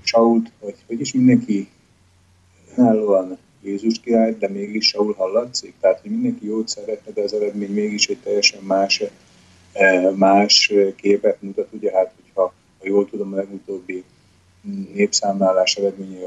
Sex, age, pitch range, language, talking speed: male, 30-49, 95-115 Hz, Slovak, 135 wpm